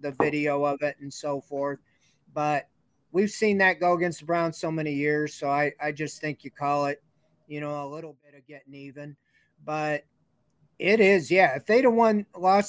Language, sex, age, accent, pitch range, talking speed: English, male, 40-59, American, 150-185 Hz, 205 wpm